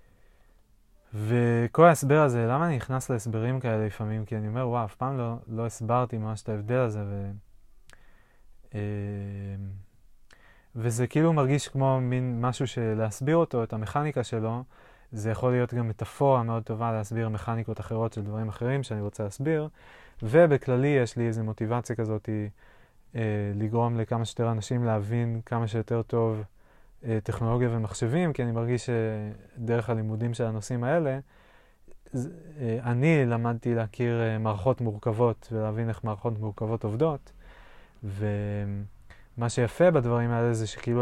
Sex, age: male, 20-39